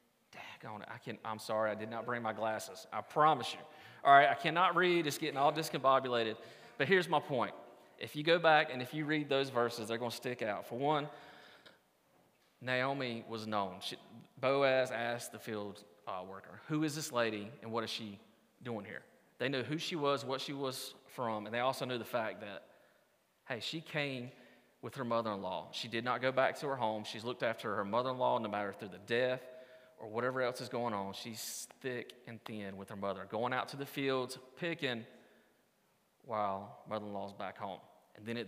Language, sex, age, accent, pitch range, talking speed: English, male, 30-49, American, 105-135 Hz, 195 wpm